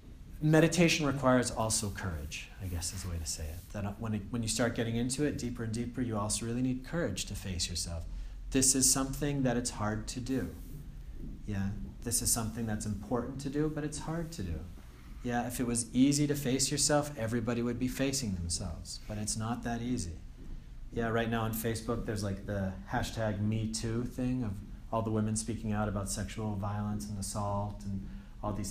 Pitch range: 100-125 Hz